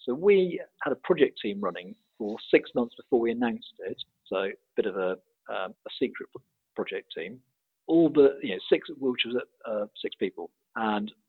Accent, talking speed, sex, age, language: British, 185 wpm, male, 50-69, English